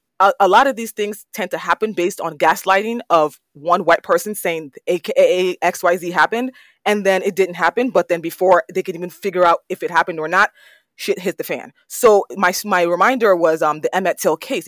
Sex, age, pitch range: female, 20-39, 170-230 Hz